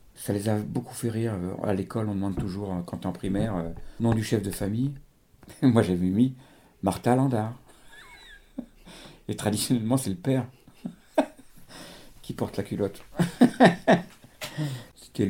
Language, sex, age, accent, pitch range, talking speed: French, male, 50-69, French, 100-135 Hz, 135 wpm